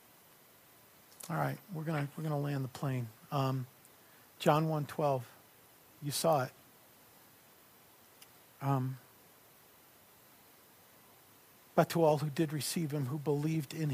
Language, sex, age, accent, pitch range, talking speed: English, male, 50-69, American, 140-160 Hz, 110 wpm